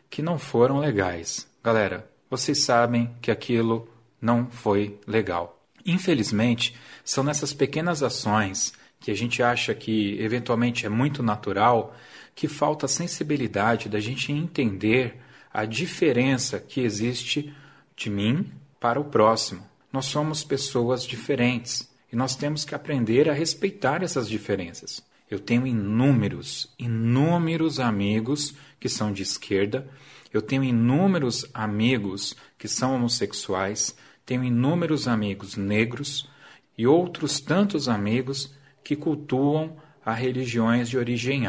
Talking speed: 125 wpm